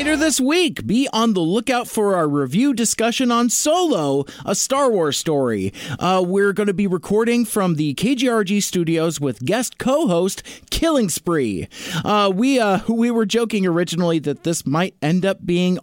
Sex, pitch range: male, 155-220 Hz